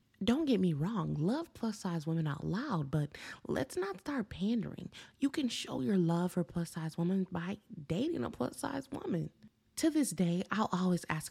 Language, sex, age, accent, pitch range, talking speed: English, female, 20-39, American, 165-235 Hz, 190 wpm